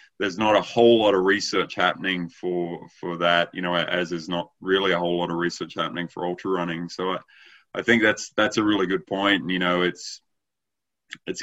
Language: English